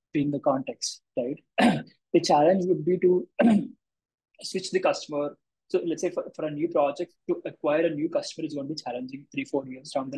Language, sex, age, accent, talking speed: English, male, 20-39, Indian, 205 wpm